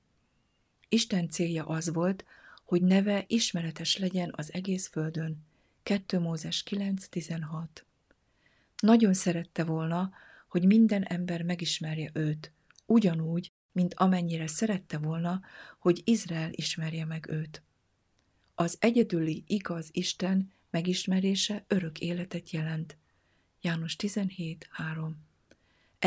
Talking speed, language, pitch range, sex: 95 wpm, Hungarian, 160-190 Hz, female